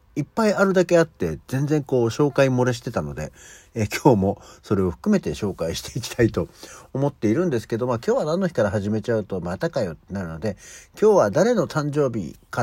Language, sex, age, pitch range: Japanese, male, 60-79, 90-140 Hz